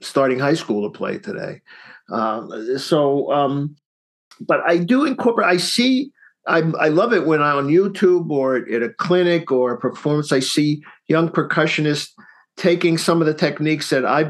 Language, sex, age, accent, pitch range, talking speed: English, male, 50-69, American, 140-175 Hz, 170 wpm